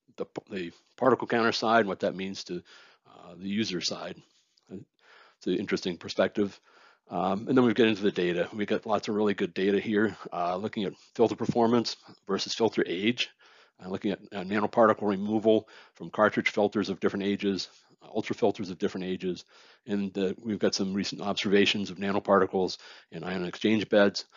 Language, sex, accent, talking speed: English, male, American, 180 wpm